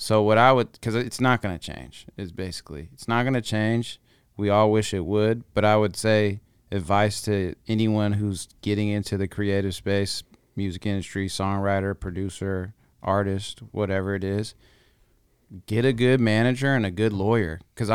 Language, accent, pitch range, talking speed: English, American, 100-115 Hz, 175 wpm